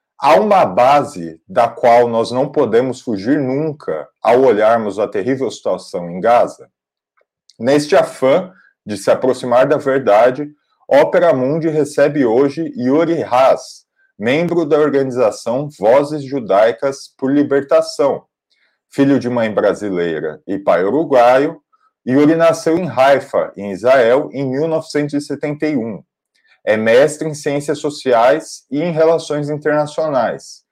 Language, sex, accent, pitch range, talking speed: Portuguese, male, Brazilian, 130-160 Hz, 120 wpm